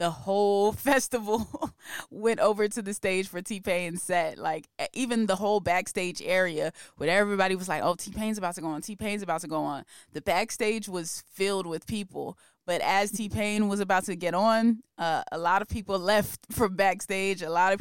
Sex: female